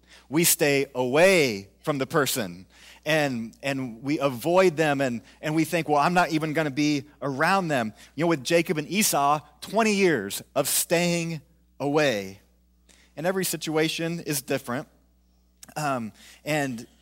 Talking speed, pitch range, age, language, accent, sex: 150 wpm, 120-165 Hz, 30-49, English, American, male